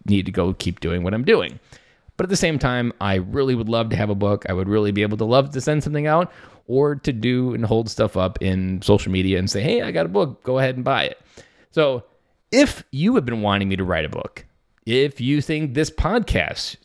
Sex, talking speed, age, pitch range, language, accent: male, 250 wpm, 20-39, 100-130 Hz, English, American